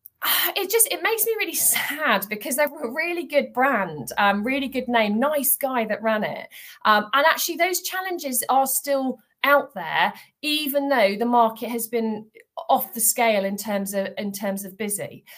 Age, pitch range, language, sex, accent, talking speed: 40-59, 230-300 Hz, English, female, British, 185 wpm